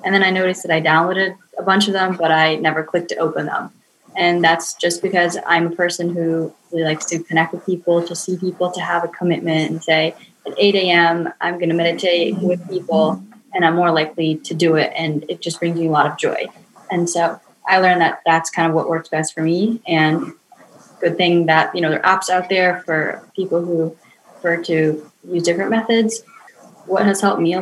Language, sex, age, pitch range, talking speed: English, female, 10-29, 165-180 Hz, 220 wpm